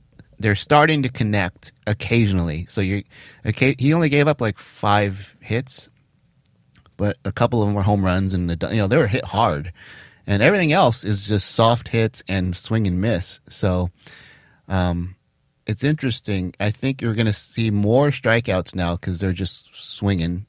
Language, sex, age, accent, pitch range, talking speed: English, male, 30-49, American, 95-125 Hz, 170 wpm